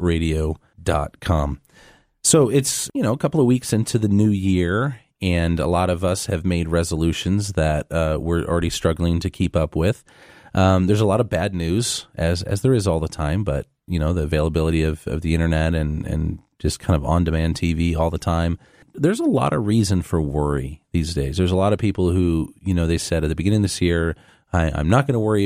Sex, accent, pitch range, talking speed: male, American, 80-105 Hz, 220 wpm